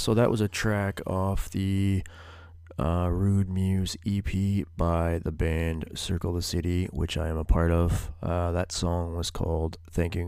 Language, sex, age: English, male, 20-39